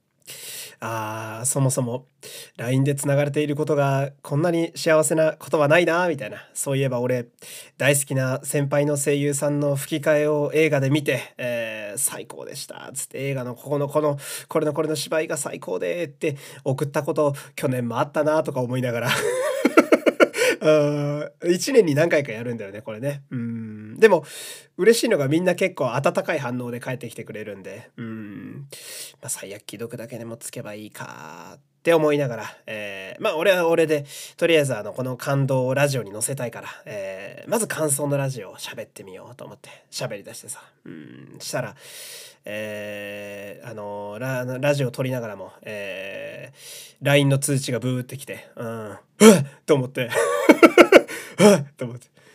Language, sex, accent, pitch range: Japanese, male, native, 120-155 Hz